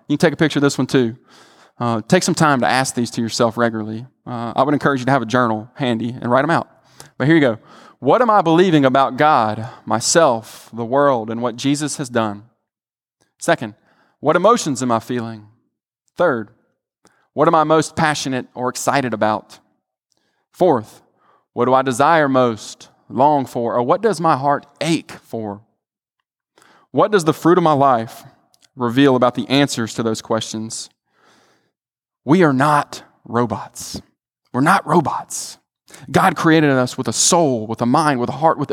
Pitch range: 115-150 Hz